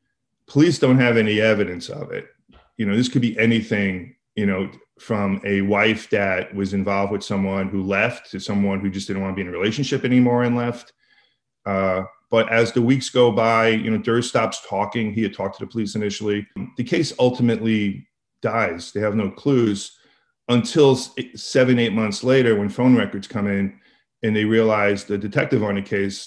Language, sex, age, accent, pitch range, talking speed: English, male, 40-59, American, 100-115 Hz, 190 wpm